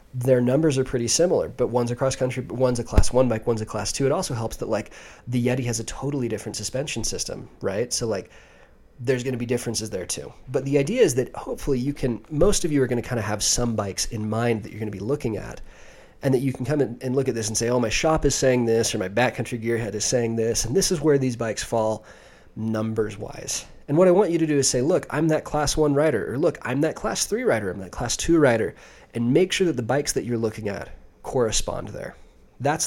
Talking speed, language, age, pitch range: 265 wpm, English, 30-49, 110-140 Hz